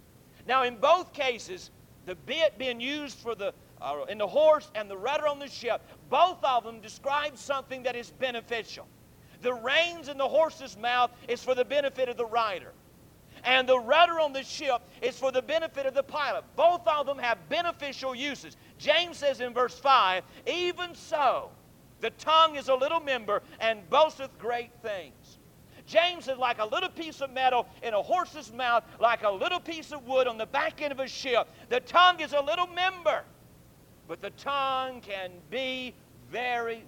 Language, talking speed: English, 185 wpm